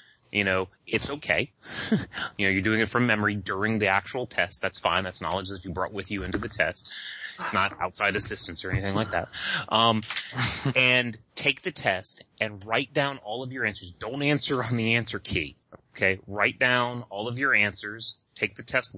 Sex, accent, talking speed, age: male, American, 200 wpm, 30-49